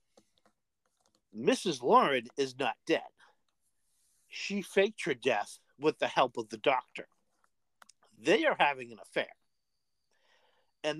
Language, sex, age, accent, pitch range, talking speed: English, male, 50-69, American, 145-210 Hz, 115 wpm